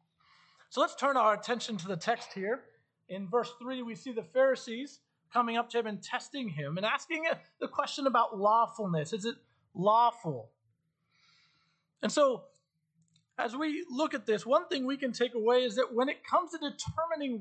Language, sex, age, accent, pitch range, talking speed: English, male, 40-59, American, 170-260 Hz, 180 wpm